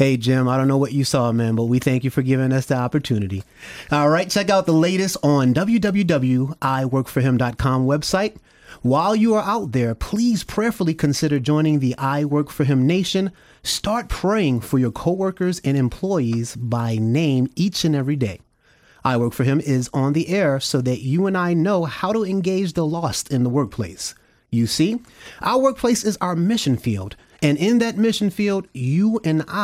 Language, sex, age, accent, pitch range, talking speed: English, male, 30-49, American, 130-190 Hz, 185 wpm